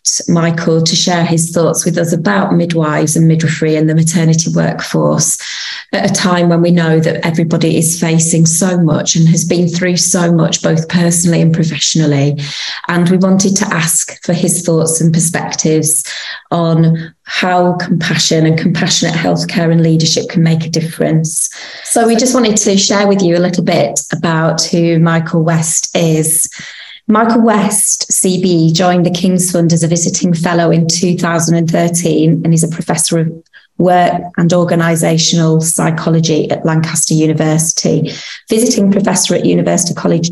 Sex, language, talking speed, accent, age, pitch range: female, English, 155 wpm, British, 20-39, 160-180 Hz